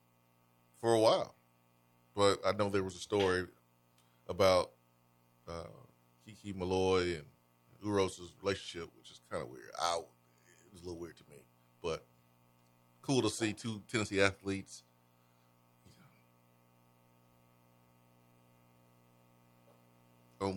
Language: English